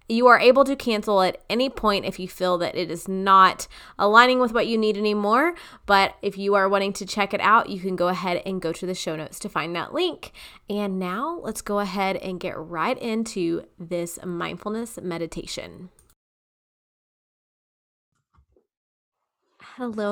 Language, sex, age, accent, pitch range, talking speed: English, female, 20-39, American, 185-215 Hz, 170 wpm